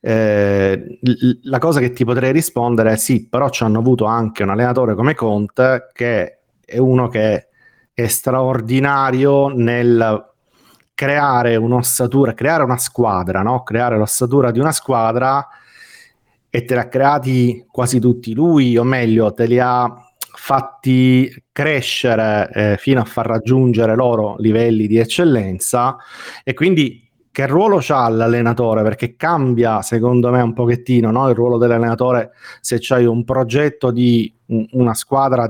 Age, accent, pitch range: 30-49, native, 115-130 Hz